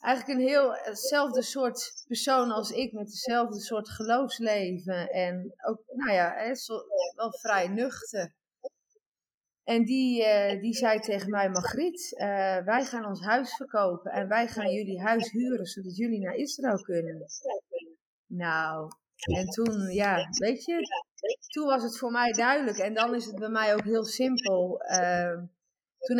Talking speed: 150 wpm